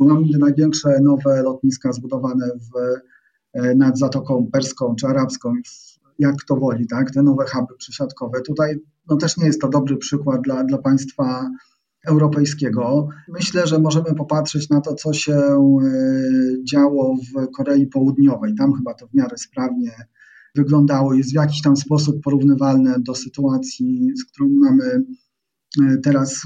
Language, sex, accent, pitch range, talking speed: Polish, male, native, 130-150 Hz, 140 wpm